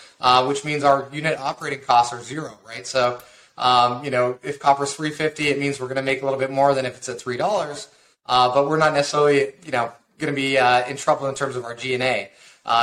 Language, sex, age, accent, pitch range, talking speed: English, male, 30-49, American, 130-150 Hz, 250 wpm